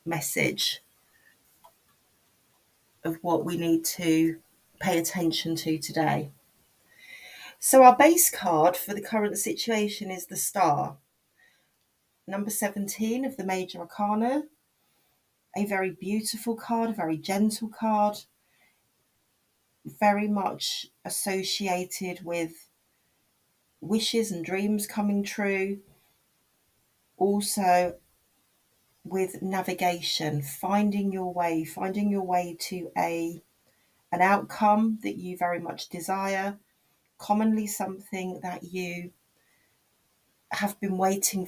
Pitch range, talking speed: 170-205 Hz, 100 wpm